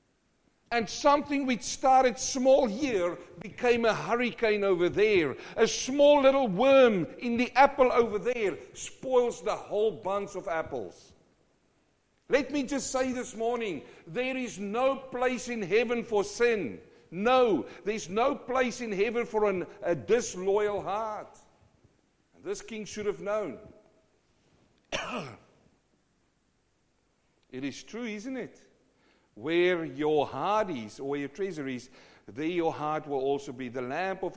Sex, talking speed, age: male, 135 wpm, 60-79